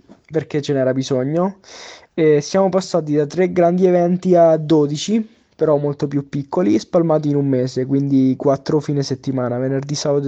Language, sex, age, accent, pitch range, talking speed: Italian, male, 20-39, native, 145-175 Hz, 160 wpm